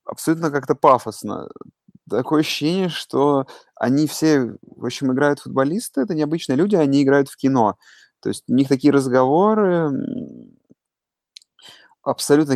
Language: Russian